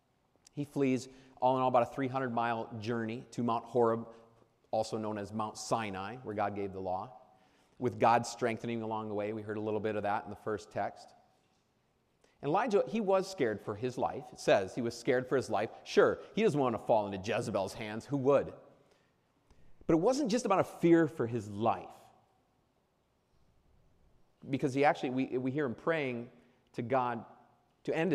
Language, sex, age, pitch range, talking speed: English, male, 40-59, 115-155 Hz, 190 wpm